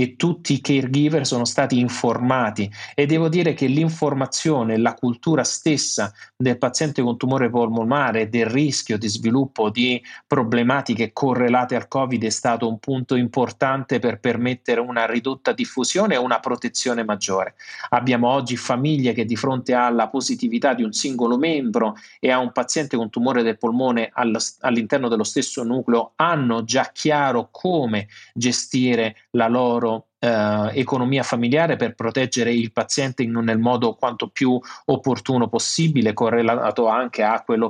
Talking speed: 145 wpm